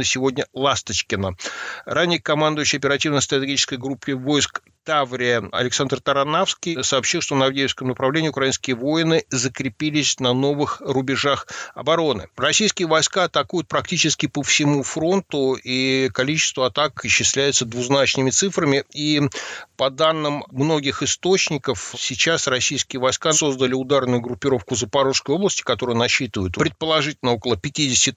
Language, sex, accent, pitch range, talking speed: Russian, male, native, 130-155 Hz, 115 wpm